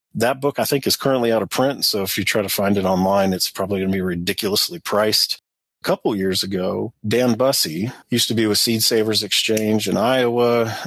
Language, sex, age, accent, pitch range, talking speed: English, male, 40-59, American, 100-115 Hz, 215 wpm